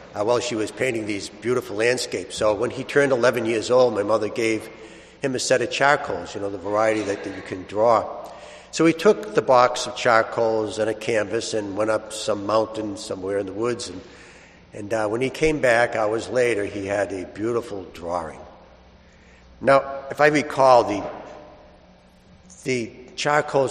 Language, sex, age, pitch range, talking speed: English, male, 60-79, 95-125 Hz, 185 wpm